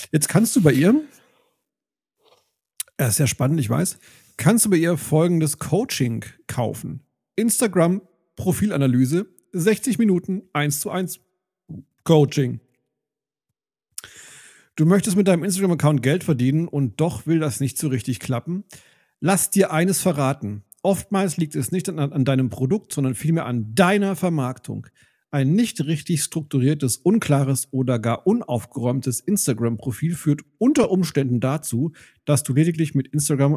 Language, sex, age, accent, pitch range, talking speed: German, male, 40-59, German, 130-180 Hz, 135 wpm